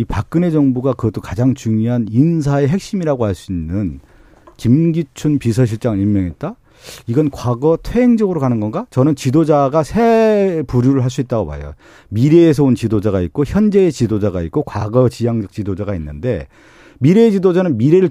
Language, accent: Korean, native